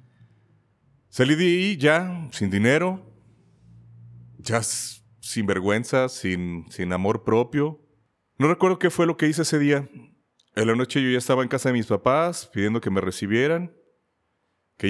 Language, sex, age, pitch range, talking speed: Spanish, male, 30-49, 105-130 Hz, 155 wpm